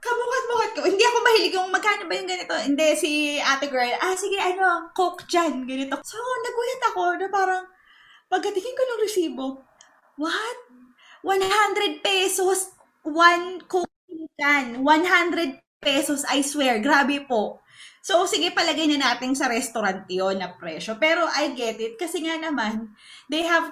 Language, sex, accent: English, female, Filipino